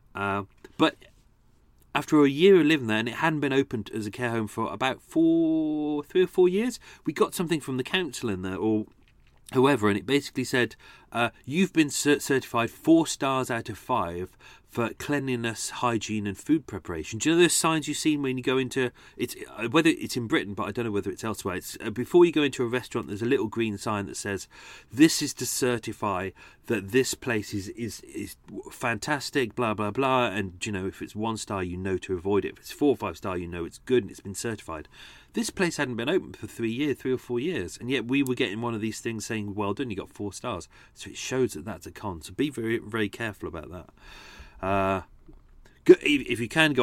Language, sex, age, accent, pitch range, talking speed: English, male, 40-59, British, 100-140 Hz, 225 wpm